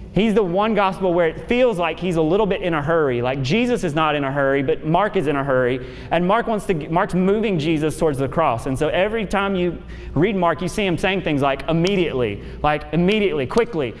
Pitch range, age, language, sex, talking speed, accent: 170-220 Hz, 30-49, English, male, 235 wpm, American